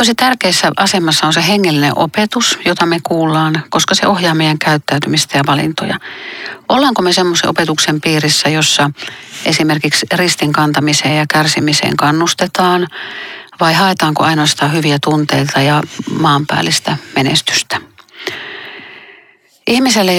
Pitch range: 150-175 Hz